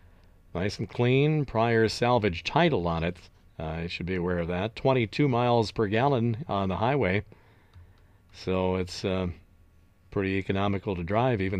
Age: 50-69